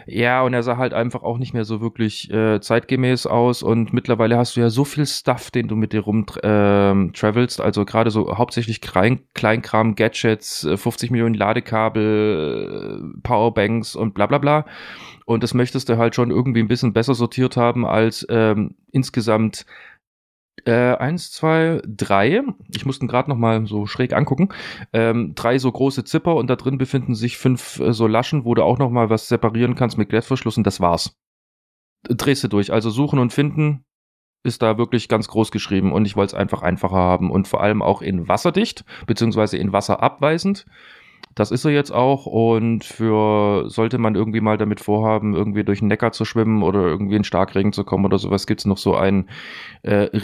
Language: German